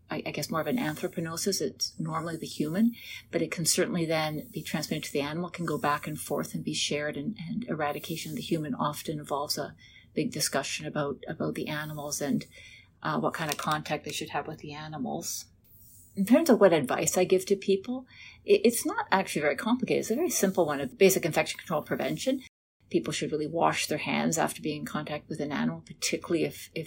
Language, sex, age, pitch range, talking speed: English, female, 40-59, 145-180 Hz, 215 wpm